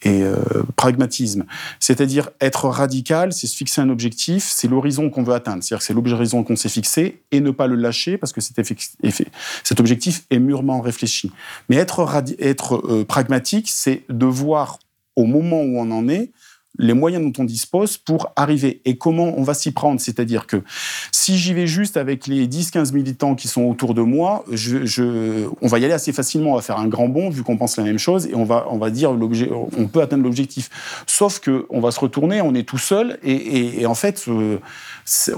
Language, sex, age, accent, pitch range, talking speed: French, male, 40-59, French, 120-150 Hz, 215 wpm